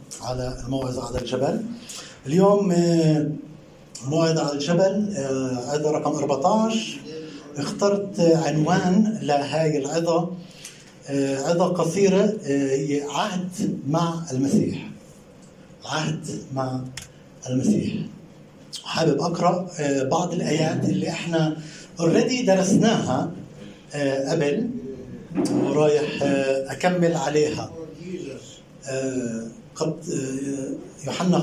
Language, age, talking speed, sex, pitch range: Arabic, 60-79, 70 wpm, male, 145-190 Hz